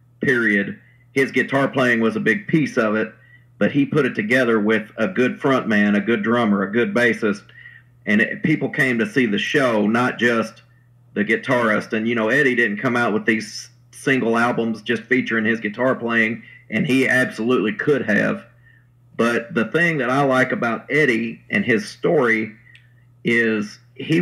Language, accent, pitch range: English, American, 115-130 Hz